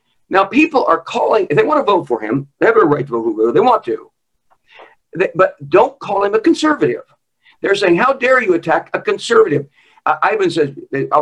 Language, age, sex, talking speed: English, 50-69, male, 215 wpm